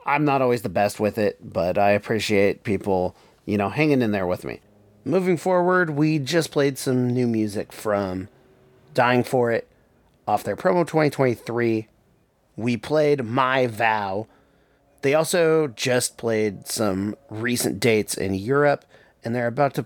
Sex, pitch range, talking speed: male, 105-135 Hz, 155 wpm